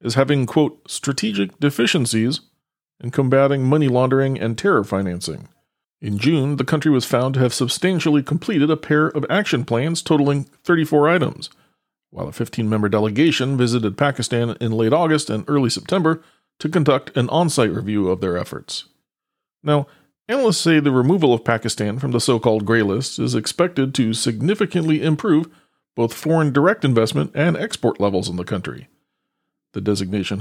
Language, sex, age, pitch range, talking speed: English, male, 40-59, 115-155 Hz, 155 wpm